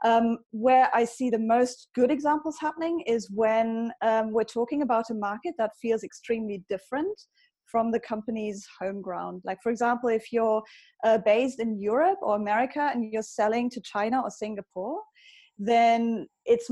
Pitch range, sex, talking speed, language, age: 210-245 Hz, female, 165 wpm, English, 20-39